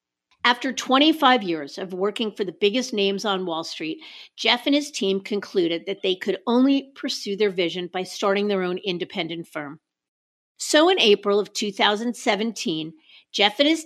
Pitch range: 185-245 Hz